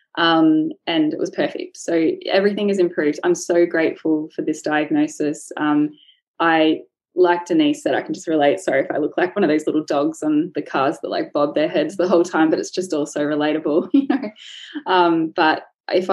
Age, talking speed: 10-29, 205 wpm